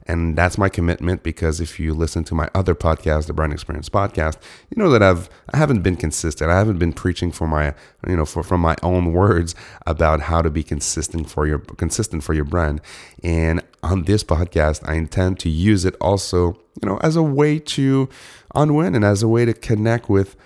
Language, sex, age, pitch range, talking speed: English, male, 30-49, 80-95 Hz, 210 wpm